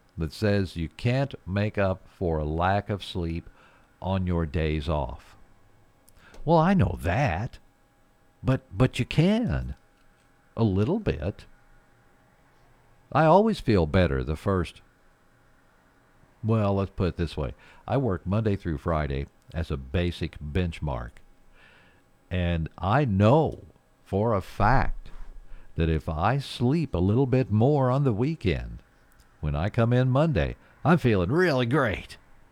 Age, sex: 60-79, male